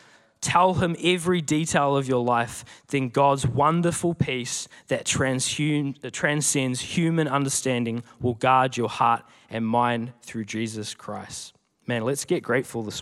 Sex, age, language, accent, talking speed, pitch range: male, 20-39, English, Australian, 135 wpm, 125-170 Hz